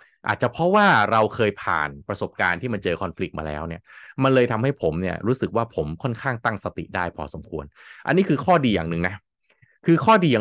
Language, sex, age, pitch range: Thai, male, 20-39, 85-130 Hz